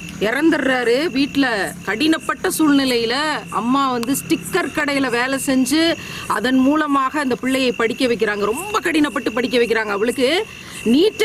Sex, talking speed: female, 115 wpm